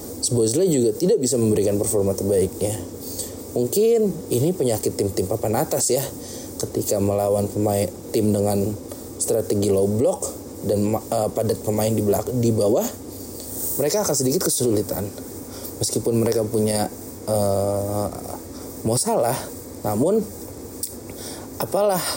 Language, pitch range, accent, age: Indonesian, 105-130 Hz, native, 20-39